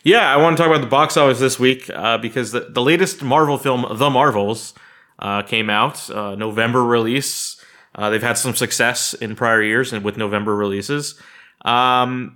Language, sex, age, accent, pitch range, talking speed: English, male, 20-39, American, 105-130 Hz, 190 wpm